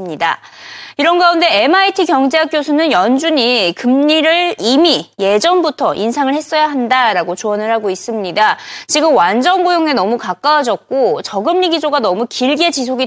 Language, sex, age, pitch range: Korean, female, 20-39, 225-335 Hz